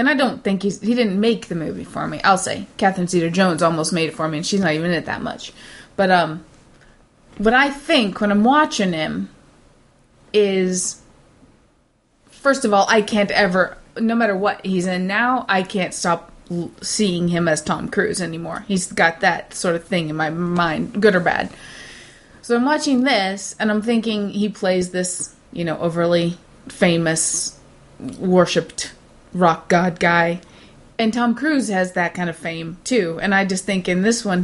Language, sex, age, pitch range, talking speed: English, female, 20-39, 180-230 Hz, 190 wpm